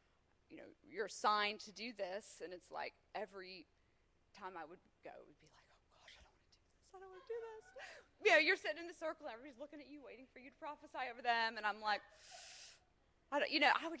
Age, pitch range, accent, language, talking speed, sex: 20-39, 205-315 Hz, American, English, 265 wpm, female